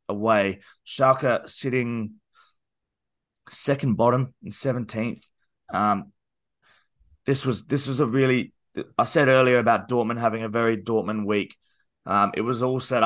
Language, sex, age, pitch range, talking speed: English, male, 20-39, 110-130 Hz, 135 wpm